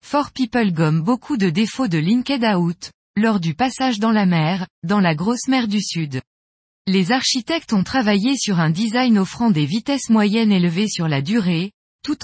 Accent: French